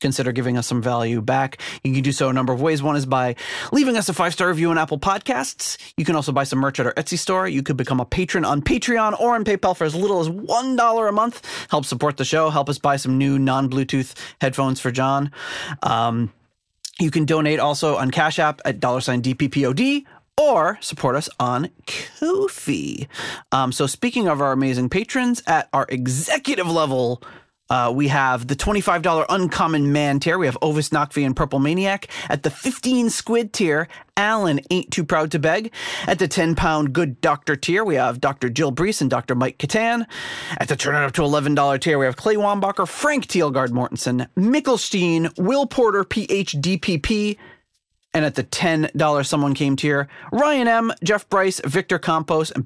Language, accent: English, American